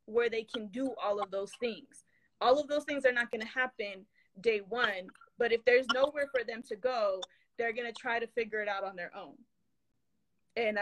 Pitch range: 220-270 Hz